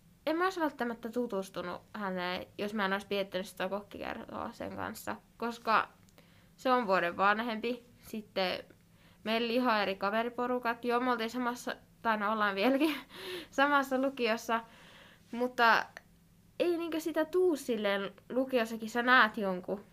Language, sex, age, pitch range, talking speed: Finnish, female, 20-39, 200-240 Hz, 135 wpm